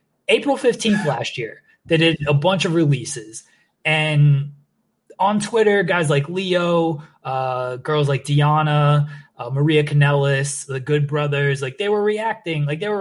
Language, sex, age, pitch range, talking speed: English, male, 20-39, 135-185 Hz, 150 wpm